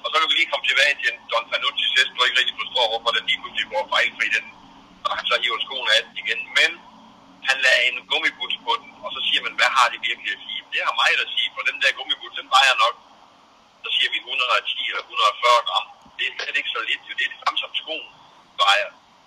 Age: 60-79